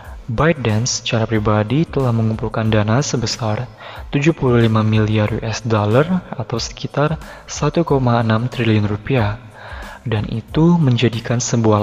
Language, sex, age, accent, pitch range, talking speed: Indonesian, male, 20-39, native, 110-140 Hz, 100 wpm